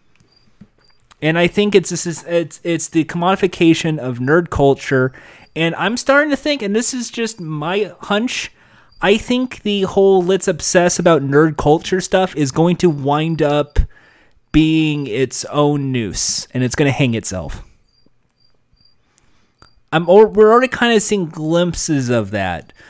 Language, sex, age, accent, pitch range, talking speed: English, male, 30-49, American, 135-190 Hz, 145 wpm